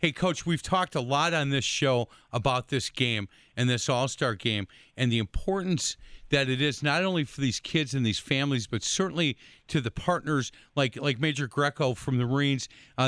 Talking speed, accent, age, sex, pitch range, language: 200 wpm, American, 50-69, male, 125-160 Hz, English